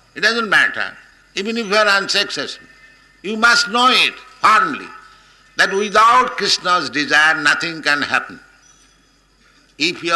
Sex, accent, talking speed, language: male, Indian, 130 wpm, English